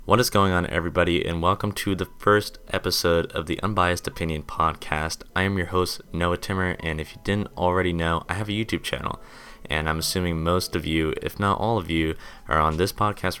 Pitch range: 80-95 Hz